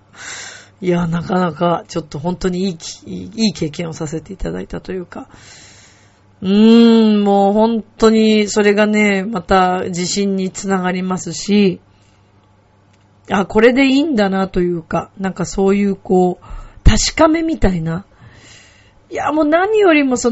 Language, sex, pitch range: Japanese, female, 165-210 Hz